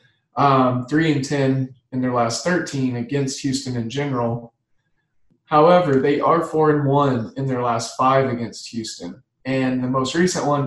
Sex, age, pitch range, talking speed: male, 20-39, 120-145 Hz, 140 wpm